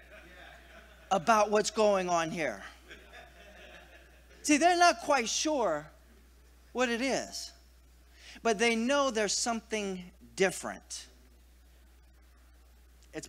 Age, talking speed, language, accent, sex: 40-59, 90 wpm, English, American, male